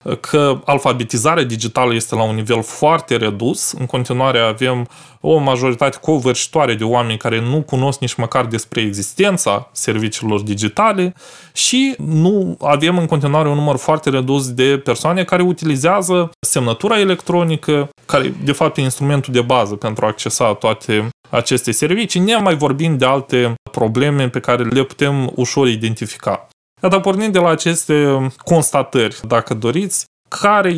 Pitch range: 120-155 Hz